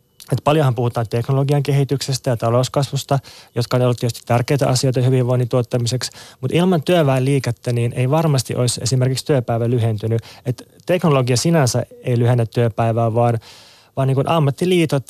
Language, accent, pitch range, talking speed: Finnish, native, 120-140 Hz, 140 wpm